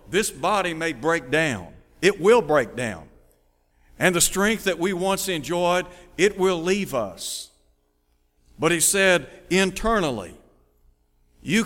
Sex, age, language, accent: male, 60-79, English, American